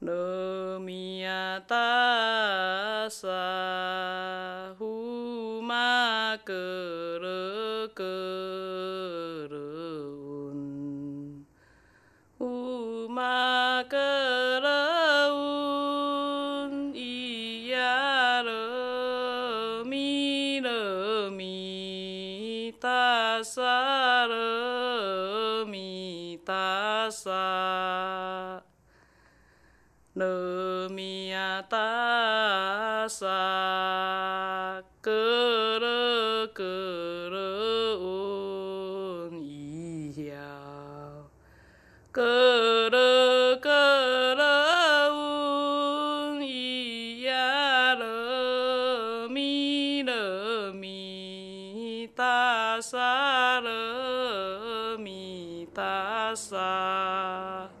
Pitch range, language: 190-250 Hz, Russian